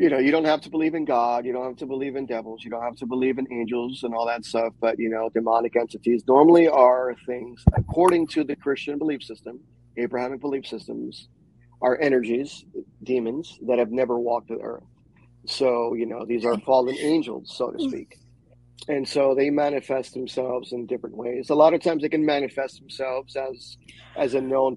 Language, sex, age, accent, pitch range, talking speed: English, male, 30-49, American, 120-140 Hz, 200 wpm